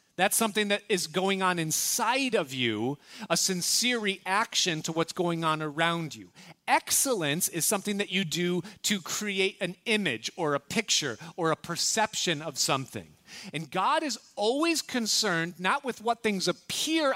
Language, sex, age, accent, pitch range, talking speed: English, male, 30-49, American, 165-220 Hz, 160 wpm